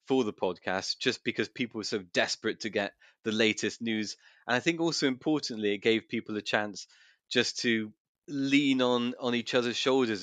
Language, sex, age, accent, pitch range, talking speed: English, male, 30-49, British, 95-115 Hz, 190 wpm